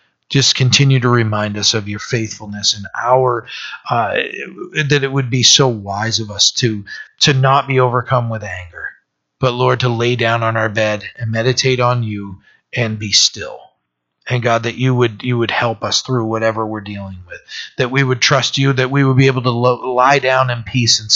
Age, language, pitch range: 40-59, English, 110-130 Hz